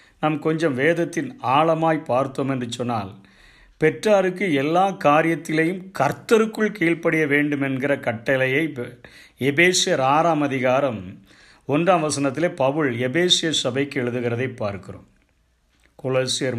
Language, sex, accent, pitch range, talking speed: Tamil, male, native, 125-160 Hz, 95 wpm